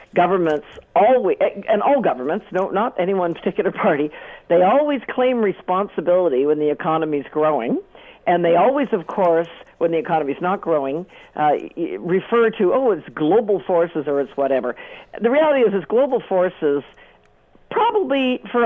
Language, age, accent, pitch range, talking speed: English, 50-69, American, 160-260 Hz, 150 wpm